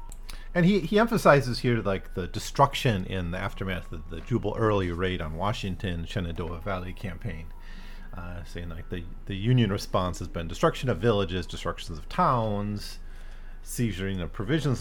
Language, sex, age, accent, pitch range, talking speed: English, male, 40-59, American, 85-110 Hz, 160 wpm